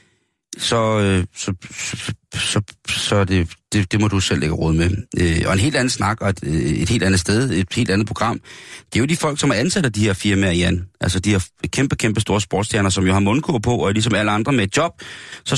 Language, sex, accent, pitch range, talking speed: Danish, male, native, 95-120 Hz, 245 wpm